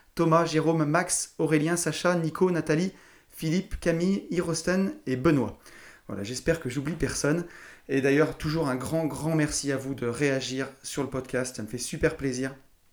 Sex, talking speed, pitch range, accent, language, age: male, 165 wpm, 135-160 Hz, French, French, 30-49